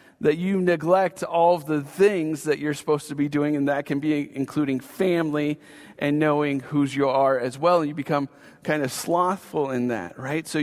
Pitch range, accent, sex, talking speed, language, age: 150-185 Hz, American, male, 200 wpm, English, 40-59